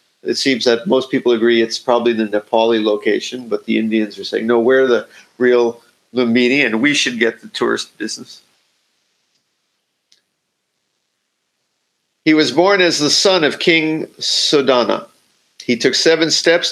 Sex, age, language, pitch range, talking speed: male, 50-69, English, 115-145 Hz, 145 wpm